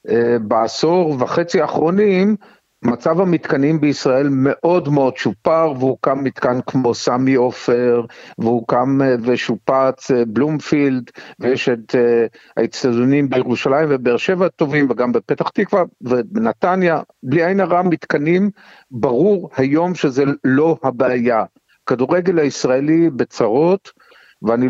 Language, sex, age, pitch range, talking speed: Hebrew, male, 50-69, 125-170 Hz, 110 wpm